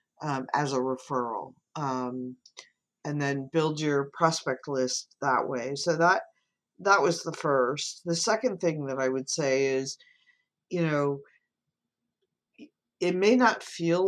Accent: American